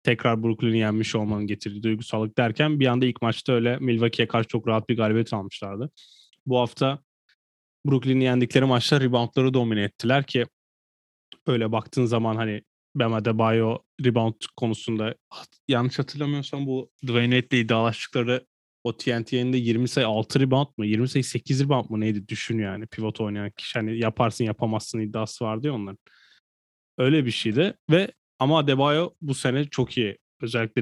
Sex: male